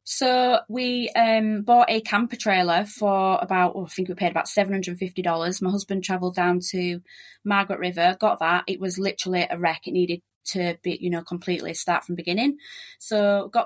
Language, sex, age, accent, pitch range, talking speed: English, female, 20-39, British, 185-220 Hz, 200 wpm